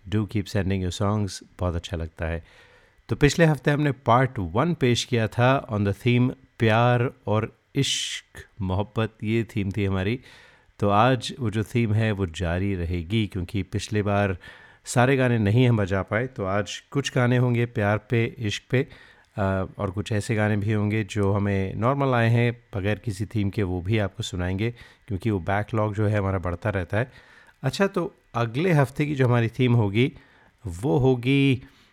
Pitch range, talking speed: 100-125 Hz, 175 wpm